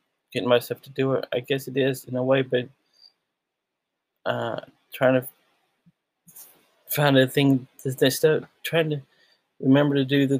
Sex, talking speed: male, 145 wpm